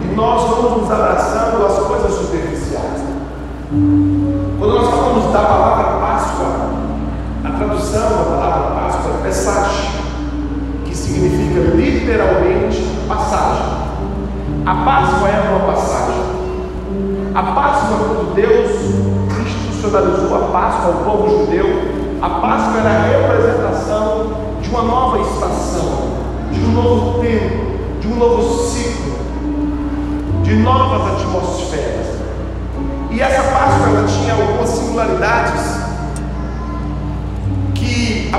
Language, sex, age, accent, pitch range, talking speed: Portuguese, male, 40-59, Brazilian, 75-110 Hz, 105 wpm